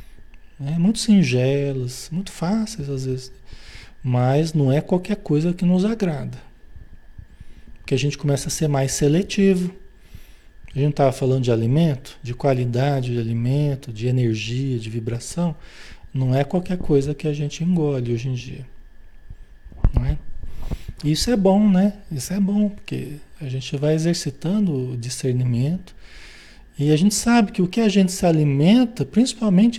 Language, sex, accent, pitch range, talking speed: Portuguese, male, Brazilian, 120-175 Hz, 150 wpm